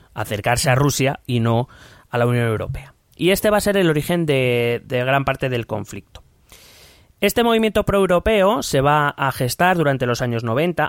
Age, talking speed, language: 30-49, 180 wpm, Spanish